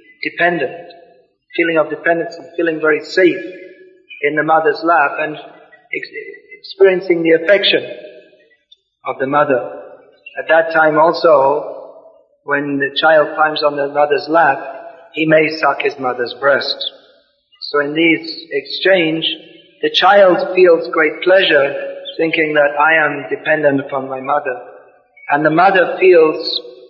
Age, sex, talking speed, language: 50-69, male, 130 wpm, English